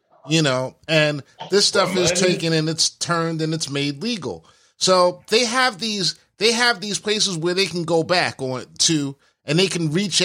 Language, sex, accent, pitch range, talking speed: English, male, American, 140-180 Hz, 195 wpm